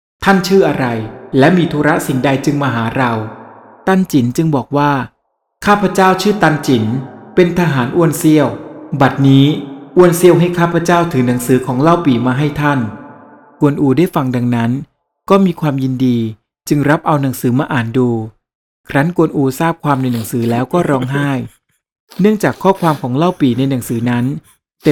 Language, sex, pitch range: Thai, male, 130-165 Hz